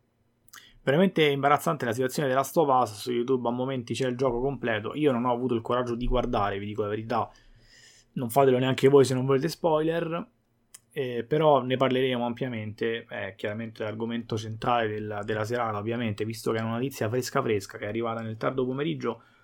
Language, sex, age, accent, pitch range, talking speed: Italian, male, 20-39, native, 115-130 Hz, 190 wpm